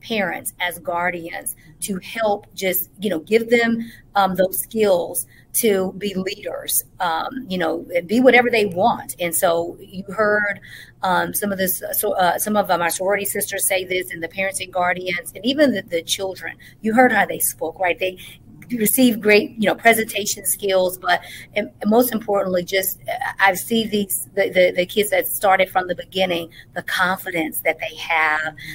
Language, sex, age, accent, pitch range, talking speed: English, female, 40-59, American, 180-210 Hz, 175 wpm